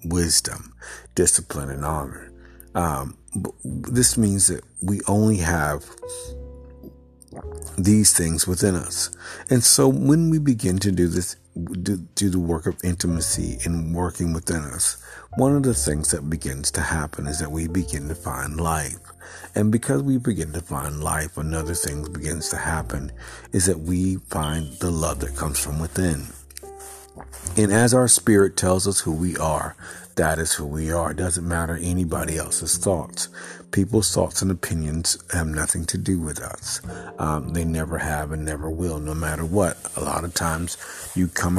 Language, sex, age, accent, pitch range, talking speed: English, male, 50-69, American, 80-95 Hz, 165 wpm